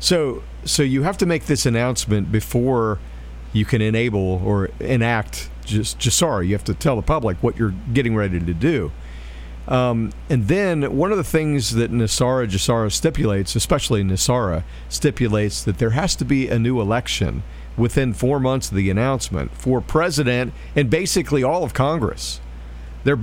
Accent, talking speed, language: American, 165 wpm, English